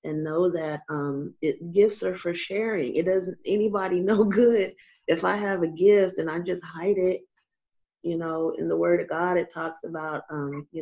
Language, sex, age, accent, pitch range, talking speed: English, female, 30-49, American, 155-205 Hz, 200 wpm